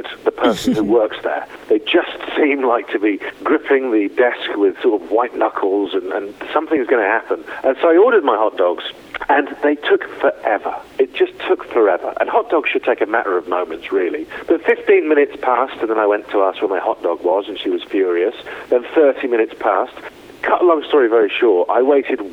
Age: 40-59